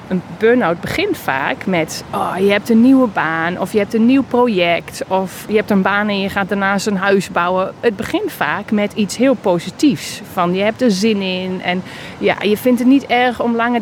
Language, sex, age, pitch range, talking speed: Dutch, female, 30-49, 185-240 Hz, 220 wpm